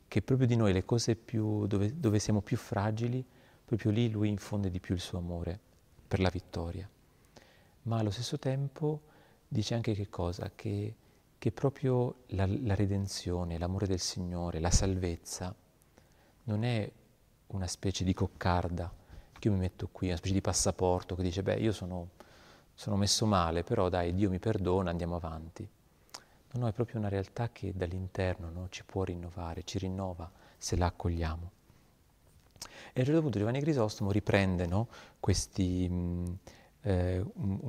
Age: 40-59